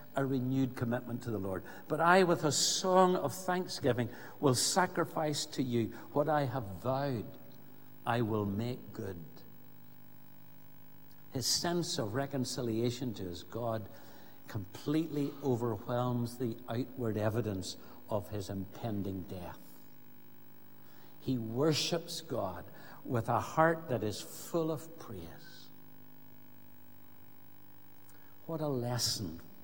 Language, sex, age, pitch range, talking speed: English, male, 60-79, 120-160 Hz, 110 wpm